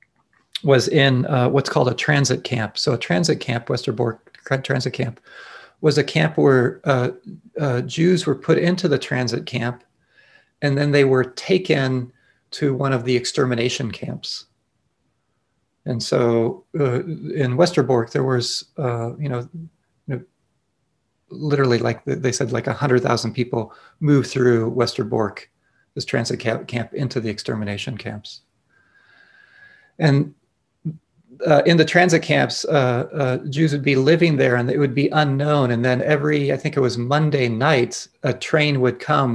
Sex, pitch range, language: male, 120-145 Hz, English